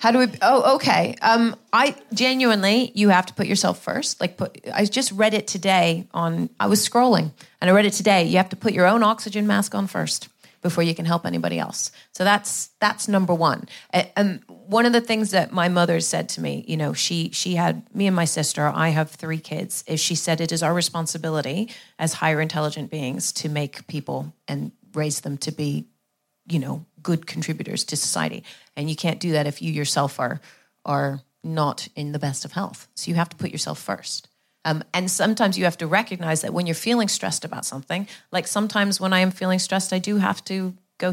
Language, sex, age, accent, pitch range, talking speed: English, female, 30-49, American, 165-210 Hz, 215 wpm